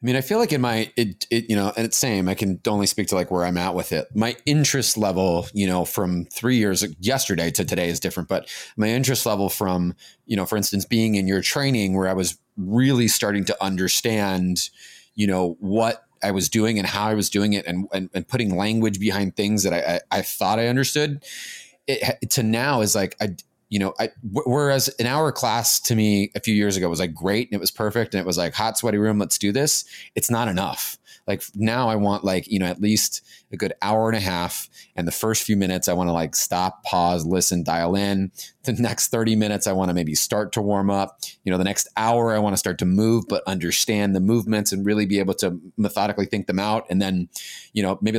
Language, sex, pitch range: English, male, 95-110 Hz